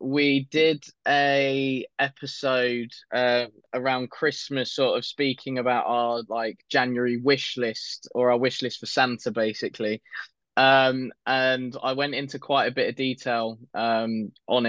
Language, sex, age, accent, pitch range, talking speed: English, male, 20-39, British, 120-130 Hz, 145 wpm